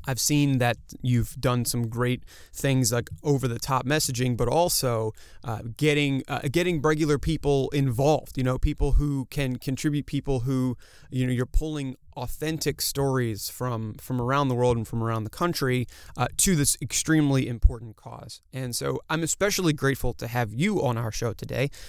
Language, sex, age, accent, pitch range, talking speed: English, male, 30-49, American, 120-145 Hz, 170 wpm